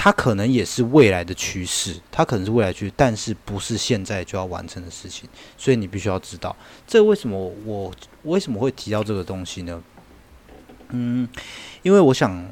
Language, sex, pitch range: Chinese, male, 95-120 Hz